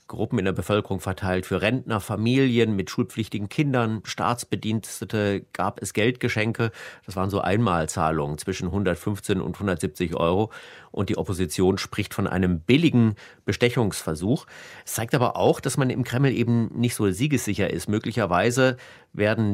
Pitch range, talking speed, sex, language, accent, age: 100-130 Hz, 145 wpm, male, German, German, 30-49